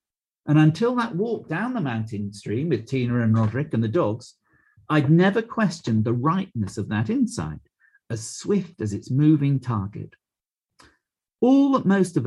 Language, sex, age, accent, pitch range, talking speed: English, male, 50-69, British, 115-170 Hz, 160 wpm